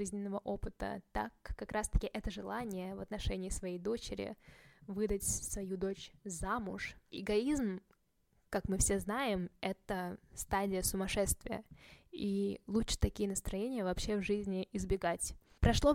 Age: 10-29